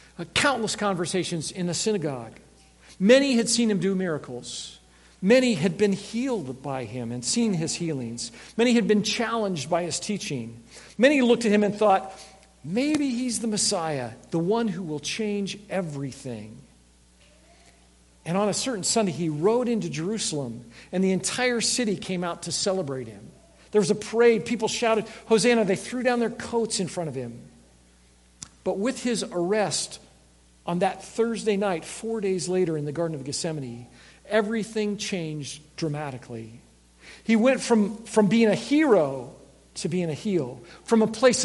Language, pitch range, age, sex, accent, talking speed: English, 130-215 Hz, 50-69, male, American, 160 wpm